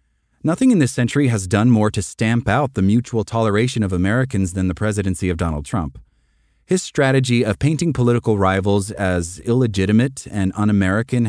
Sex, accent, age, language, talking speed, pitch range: male, American, 30-49, English, 165 wpm, 95-130 Hz